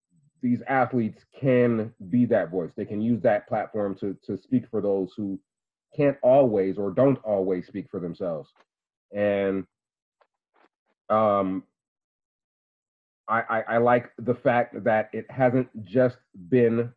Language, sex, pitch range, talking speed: English, male, 100-120 Hz, 135 wpm